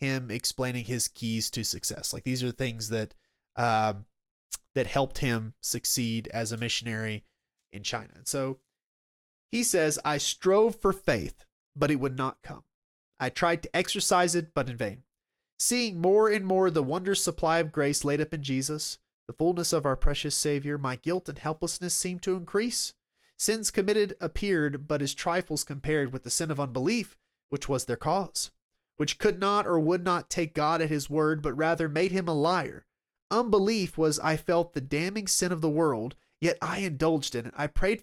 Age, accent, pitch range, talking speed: 30-49, American, 130-175 Hz, 190 wpm